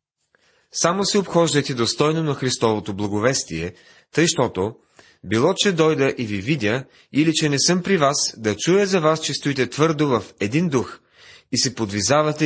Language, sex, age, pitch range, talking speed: Bulgarian, male, 30-49, 105-155 Hz, 165 wpm